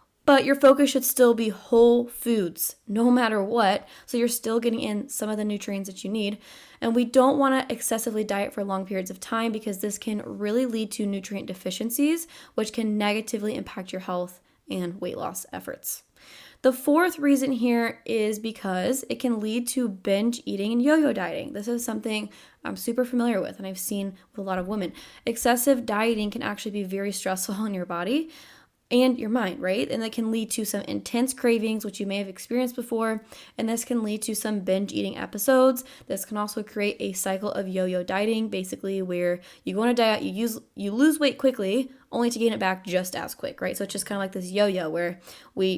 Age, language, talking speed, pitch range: 10-29, English, 210 wpm, 200-240 Hz